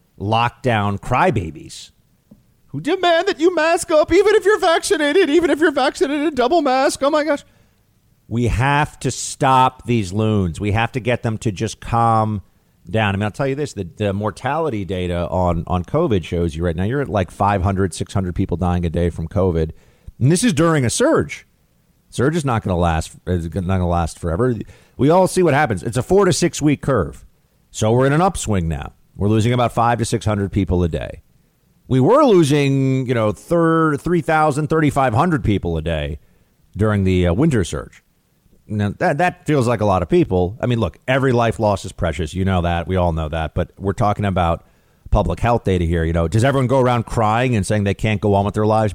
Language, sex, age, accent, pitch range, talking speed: English, male, 40-59, American, 95-135 Hz, 220 wpm